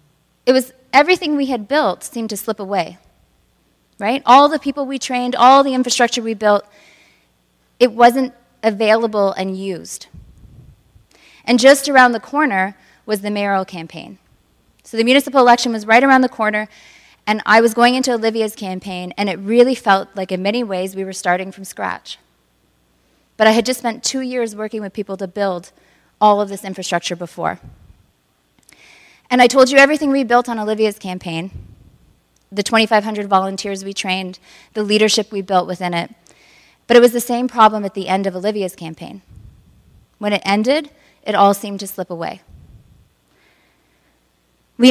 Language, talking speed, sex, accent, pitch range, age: English, 165 wpm, female, American, 195-245 Hz, 30-49